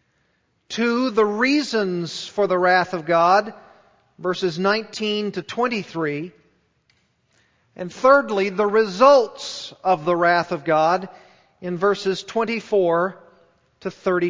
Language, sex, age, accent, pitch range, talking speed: English, male, 40-59, American, 175-220 Hz, 100 wpm